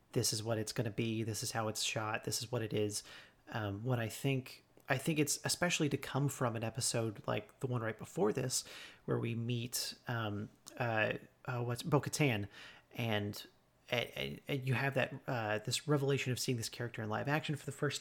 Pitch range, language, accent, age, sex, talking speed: 115-140 Hz, English, American, 40-59, male, 205 wpm